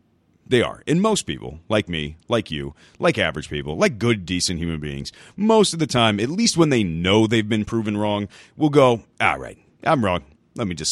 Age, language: 30-49, English